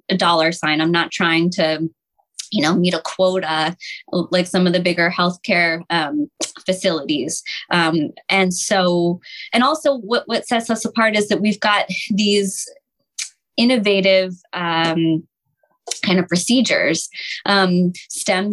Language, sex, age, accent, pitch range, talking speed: English, female, 20-39, American, 180-205 Hz, 135 wpm